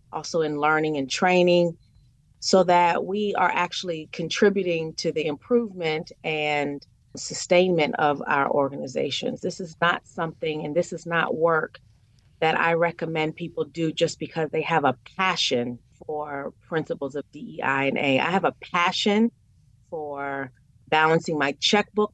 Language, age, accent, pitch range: English, 30-49, American, 140-175 Hz